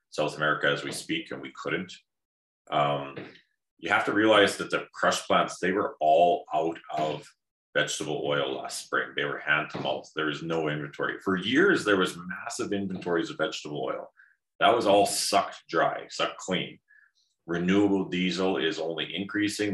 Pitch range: 80-105 Hz